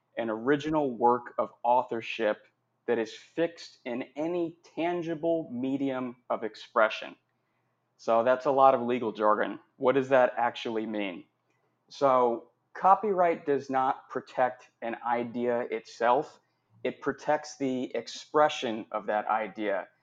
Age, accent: 30-49, American